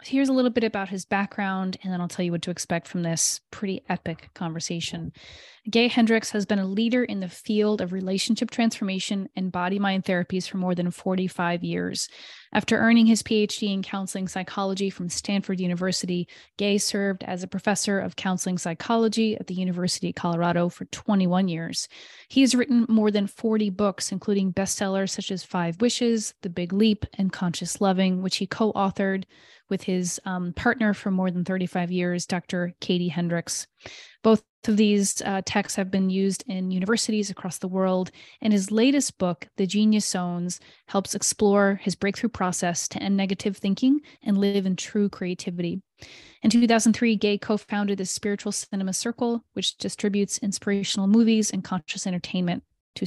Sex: female